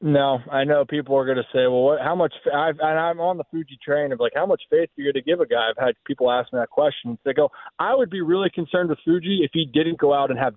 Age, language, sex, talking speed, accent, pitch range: 20-39, English, male, 295 wpm, American, 135-185 Hz